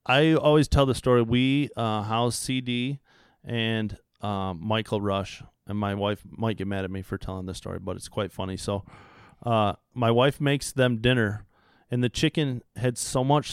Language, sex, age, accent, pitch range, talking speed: English, male, 30-49, American, 105-125 Hz, 190 wpm